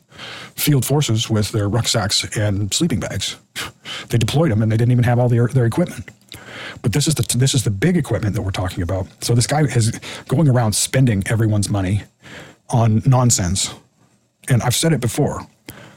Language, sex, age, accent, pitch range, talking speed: English, male, 40-59, American, 105-130 Hz, 175 wpm